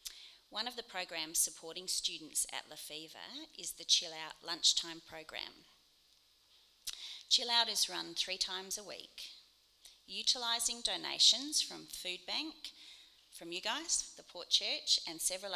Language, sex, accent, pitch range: English, female, Australian, 165-205 Hz